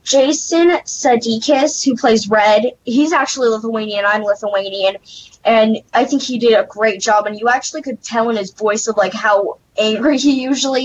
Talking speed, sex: 175 wpm, female